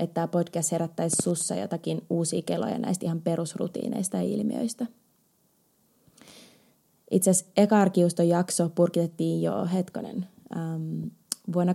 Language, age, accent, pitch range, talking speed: Finnish, 20-39, native, 165-210 Hz, 110 wpm